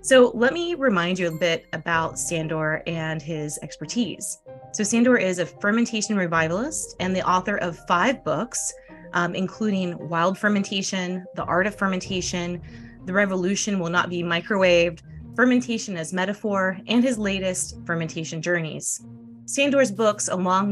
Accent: American